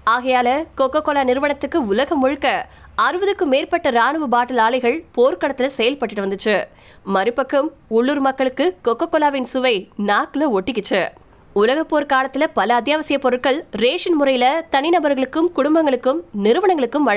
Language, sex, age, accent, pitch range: Tamil, female, 20-39, native, 240-300 Hz